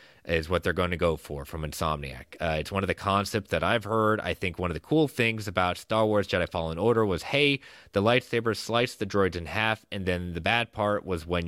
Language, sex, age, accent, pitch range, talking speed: English, male, 30-49, American, 85-110 Hz, 245 wpm